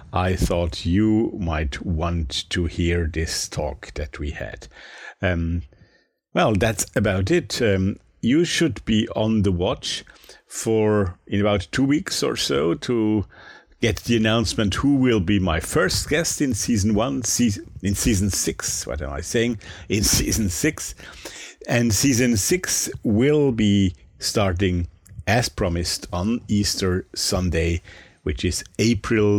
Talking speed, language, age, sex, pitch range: 140 wpm, English, 50-69, male, 85-110 Hz